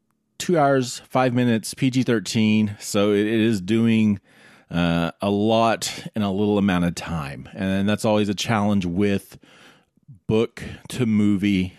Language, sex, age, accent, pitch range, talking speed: English, male, 30-49, American, 90-110 Hz, 125 wpm